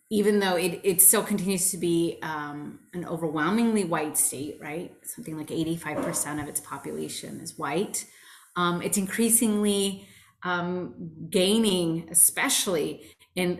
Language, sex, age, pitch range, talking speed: English, female, 30-49, 165-210 Hz, 130 wpm